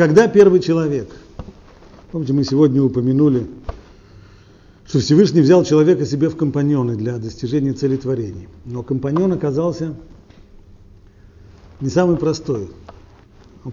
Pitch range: 100-160 Hz